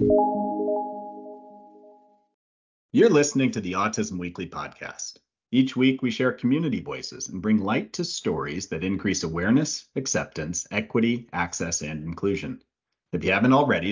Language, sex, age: English, male, 40-59